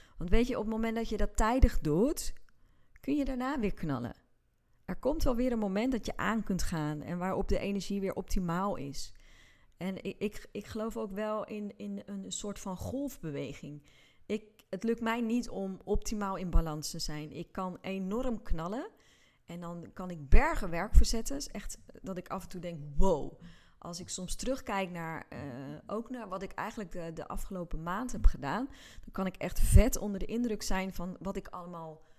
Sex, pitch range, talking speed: female, 170-220 Hz, 195 wpm